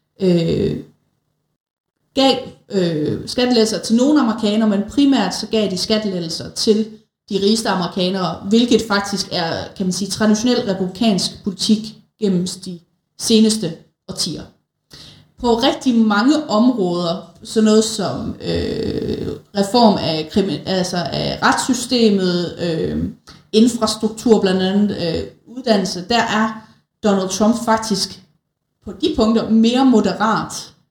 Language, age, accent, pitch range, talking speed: Danish, 30-49, native, 185-225 Hz, 115 wpm